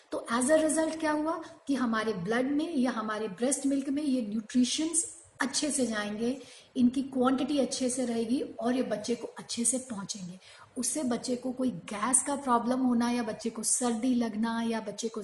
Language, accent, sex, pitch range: Hindi, native, female, 225-265 Hz